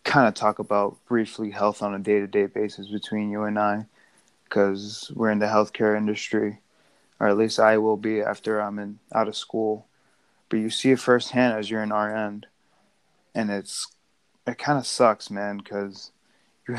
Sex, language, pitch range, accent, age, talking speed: male, English, 105-115 Hz, American, 20-39, 180 wpm